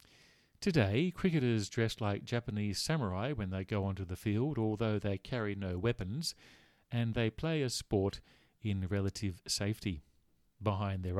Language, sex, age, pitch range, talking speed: English, male, 40-59, 100-135 Hz, 145 wpm